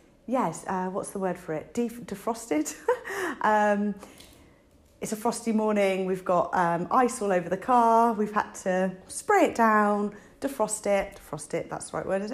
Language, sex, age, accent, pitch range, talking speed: English, female, 30-49, British, 175-225 Hz, 175 wpm